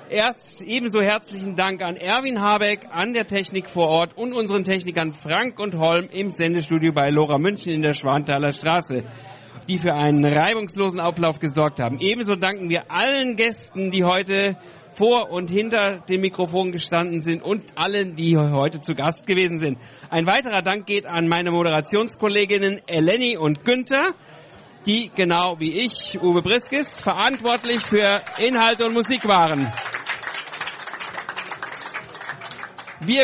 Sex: male